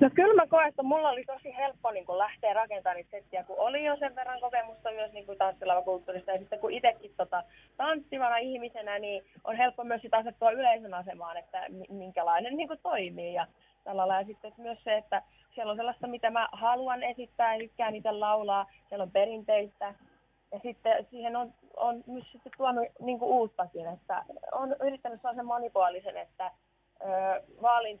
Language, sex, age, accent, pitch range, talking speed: Finnish, female, 20-39, native, 195-255 Hz, 180 wpm